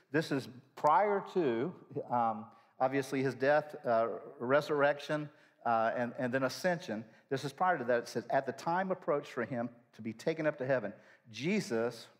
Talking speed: 170 wpm